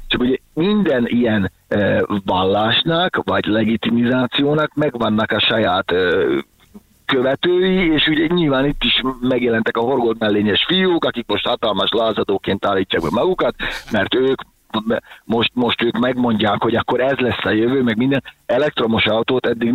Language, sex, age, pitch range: Hungarian, male, 50-69, 110-140 Hz